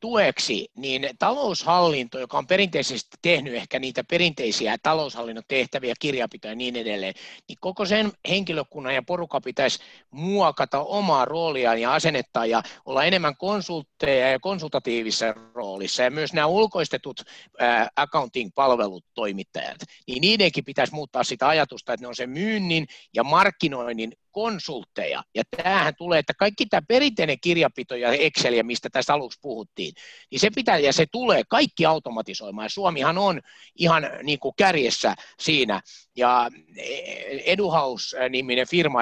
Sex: male